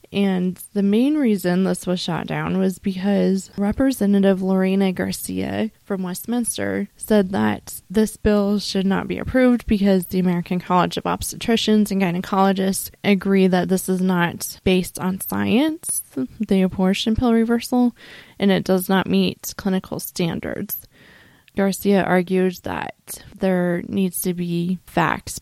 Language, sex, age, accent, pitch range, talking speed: English, female, 20-39, American, 180-205 Hz, 135 wpm